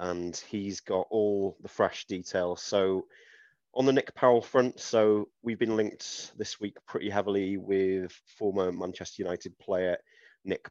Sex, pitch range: male, 95-110 Hz